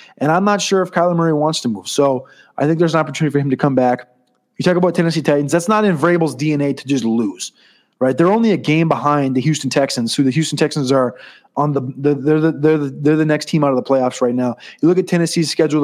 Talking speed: 260 wpm